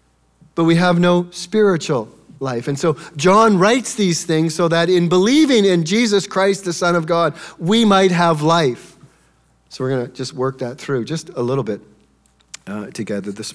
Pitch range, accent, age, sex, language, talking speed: 130-185 Hz, American, 40-59, male, English, 180 wpm